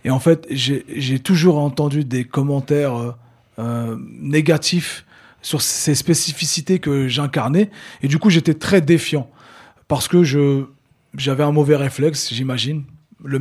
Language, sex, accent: French, male, French